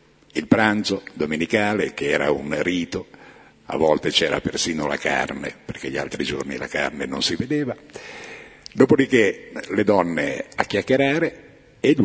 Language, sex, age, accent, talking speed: Italian, male, 60-79, native, 145 wpm